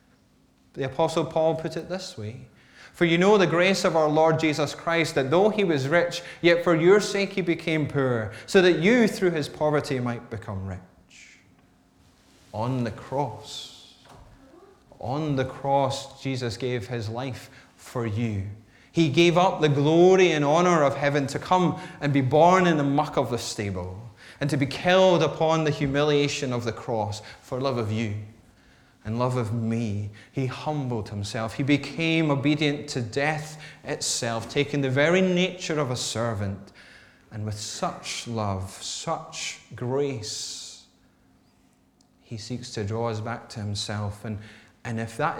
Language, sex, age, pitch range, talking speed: English, male, 20-39, 115-160 Hz, 160 wpm